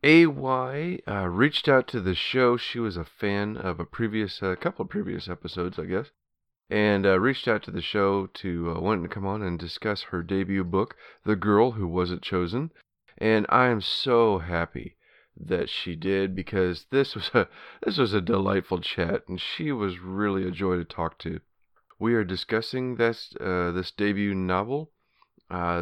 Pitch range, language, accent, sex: 90-110 Hz, English, American, male